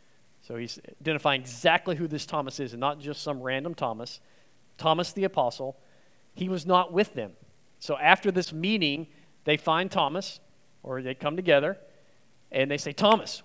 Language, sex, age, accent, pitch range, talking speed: English, male, 40-59, American, 135-185 Hz, 165 wpm